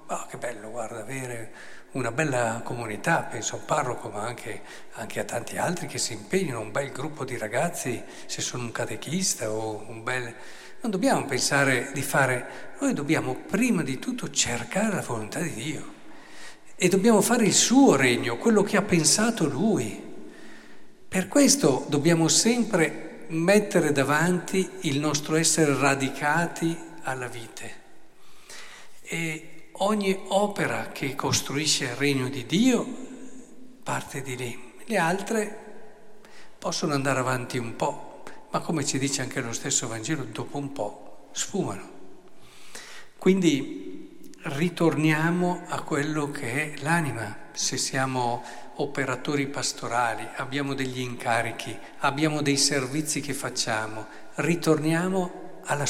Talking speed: 130 wpm